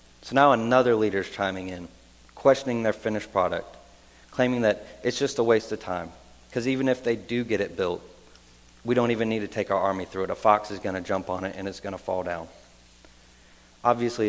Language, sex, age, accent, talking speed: English, male, 30-49, American, 220 wpm